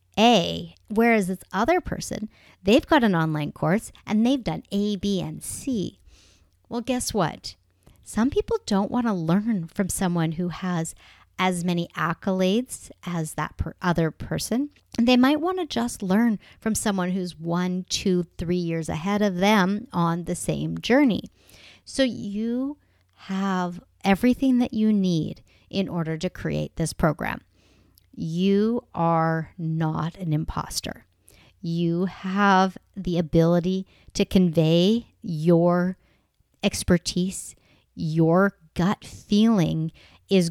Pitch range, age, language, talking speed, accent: 165-210 Hz, 40-59, English, 130 wpm, American